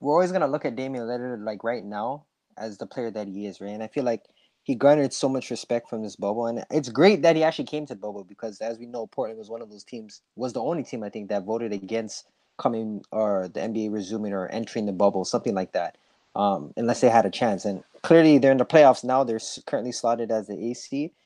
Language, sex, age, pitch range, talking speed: English, male, 20-39, 110-135 Hz, 255 wpm